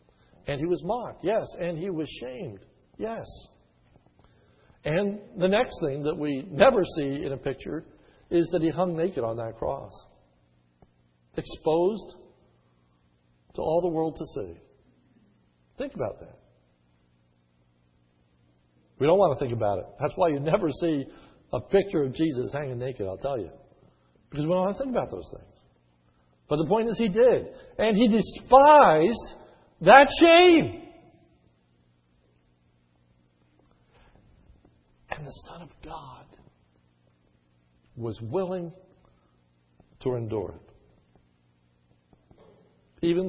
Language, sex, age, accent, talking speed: English, male, 60-79, American, 125 wpm